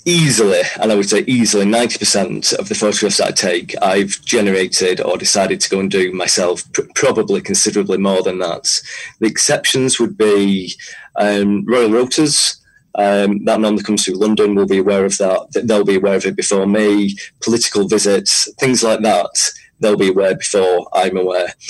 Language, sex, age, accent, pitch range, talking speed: English, male, 30-49, British, 100-115 Hz, 175 wpm